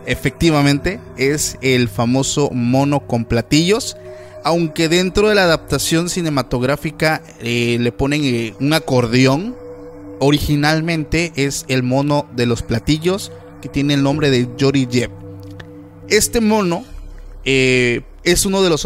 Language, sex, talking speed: Spanish, male, 125 wpm